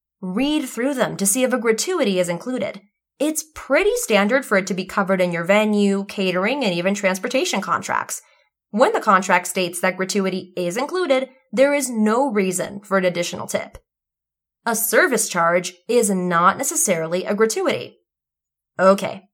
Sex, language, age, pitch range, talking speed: female, English, 20-39, 195-275 Hz, 160 wpm